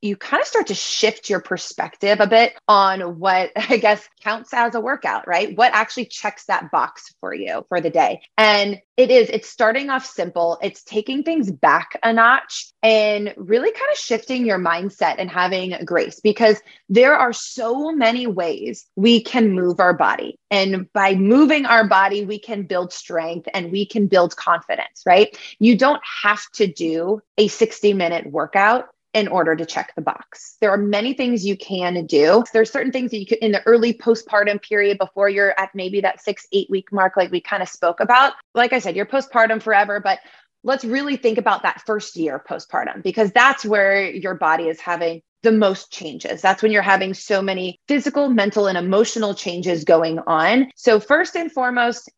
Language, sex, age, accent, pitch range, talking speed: English, female, 20-39, American, 190-240 Hz, 195 wpm